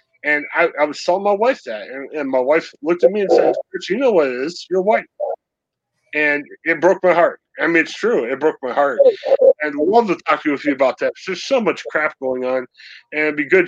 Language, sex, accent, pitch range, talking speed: English, male, American, 140-195 Hz, 255 wpm